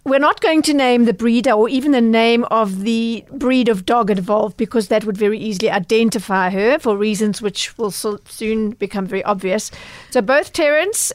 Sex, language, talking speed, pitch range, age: female, English, 195 wpm, 195-240 Hz, 40-59